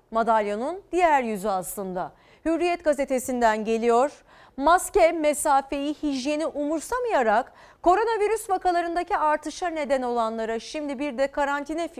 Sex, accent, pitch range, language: female, native, 215-295 Hz, Turkish